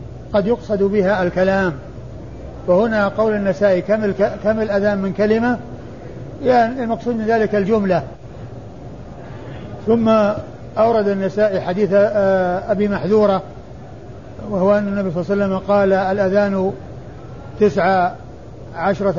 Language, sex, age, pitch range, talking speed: Arabic, male, 50-69, 130-205 Hz, 105 wpm